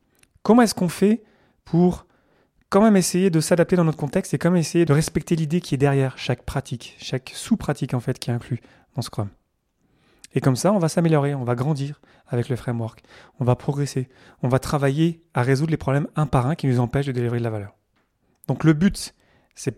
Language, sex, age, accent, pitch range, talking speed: French, male, 30-49, French, 120-160 Hz, 215 wpm